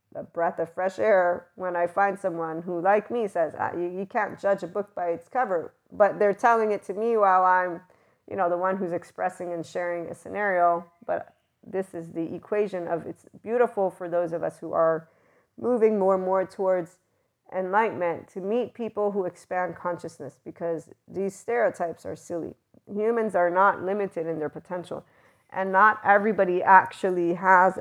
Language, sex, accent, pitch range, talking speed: English, female, American, 175-205 Hz, 180 wpm